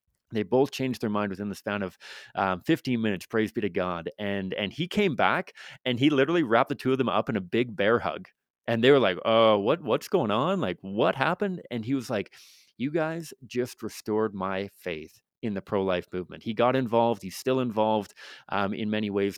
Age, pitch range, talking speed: 30-49, 95-120 Hz, 220 wpm